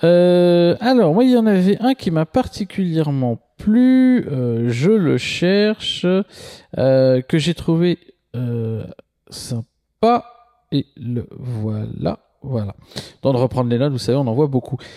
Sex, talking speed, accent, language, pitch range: male, 150 wpm, French, French, 125-175 Hz